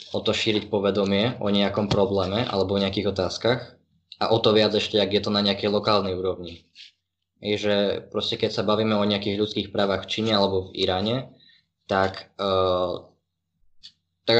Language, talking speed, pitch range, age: Slovak, 165 wpm, 90-105 Hz, 20-39